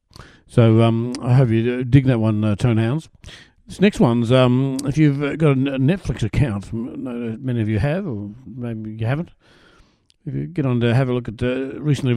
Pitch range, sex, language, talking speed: 100-125 Hz, male, English, 195 wpm